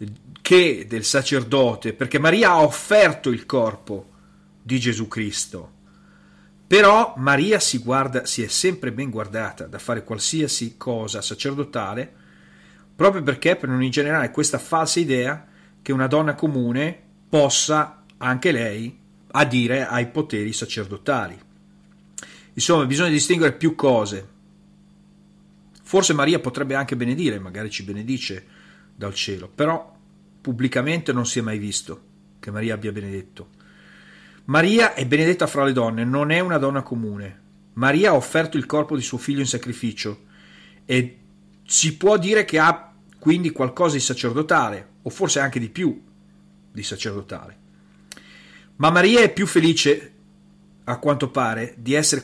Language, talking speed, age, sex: Italian, 135 wpm, 40-59, male